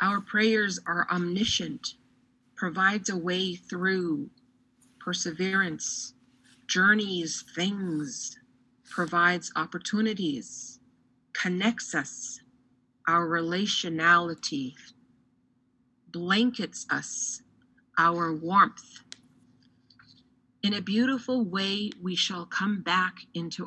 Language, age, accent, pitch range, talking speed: English, 50-69, American, 165-205 Hz, 75 wpm